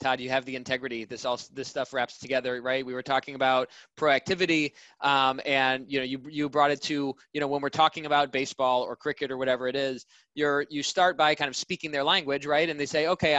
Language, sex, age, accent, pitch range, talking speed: English, male, 20-39, American, 130-145 Hz, 240 wpm